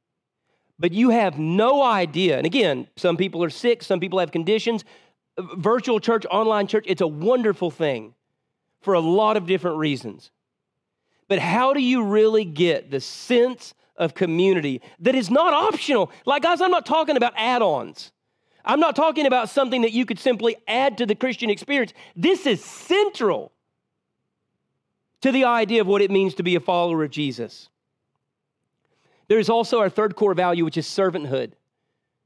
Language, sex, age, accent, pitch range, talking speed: English, male, 40-59, American, 165-225 Hz, 165 wpm